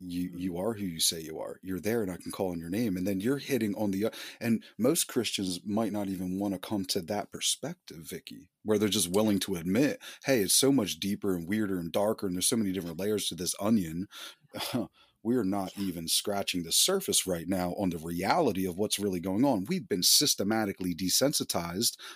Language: English